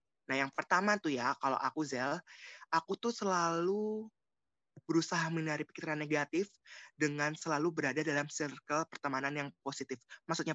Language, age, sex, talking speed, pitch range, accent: Indonesian, 20-39, male, 135 wpm, 140-180 Hz, native